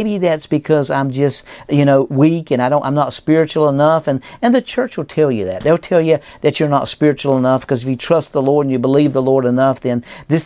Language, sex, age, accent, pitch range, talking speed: English, male, 50-69, American, 130-160 Hz, 260 wpm